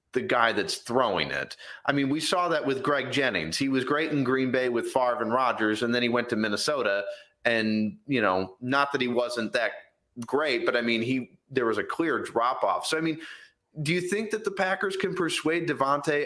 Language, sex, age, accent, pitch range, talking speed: English, male, 30-49, American, 115-145 Hz, 220 wpm